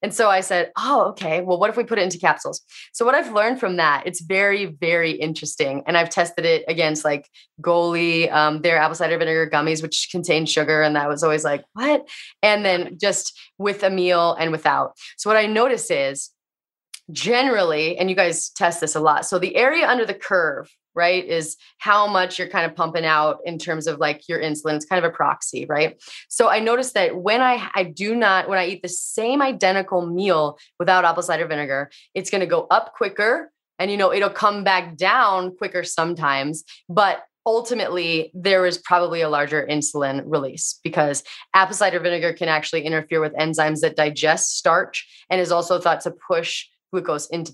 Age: 20-39